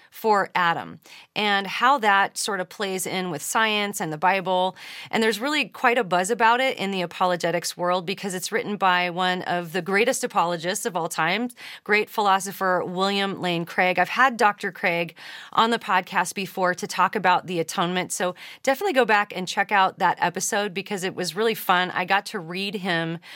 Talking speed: 195 wpm